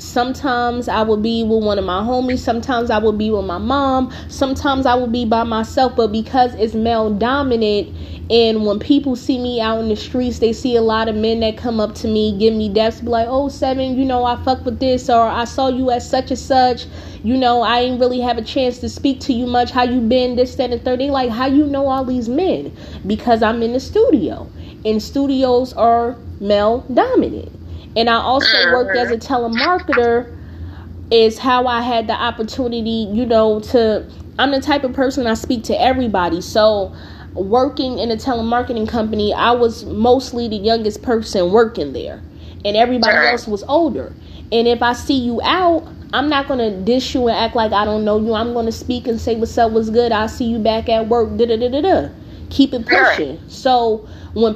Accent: American